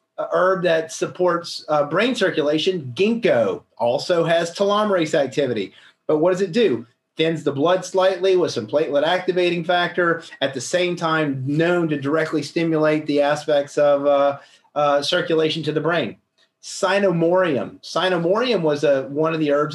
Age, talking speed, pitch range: 30-49, 150 wpm, 145-180 Hz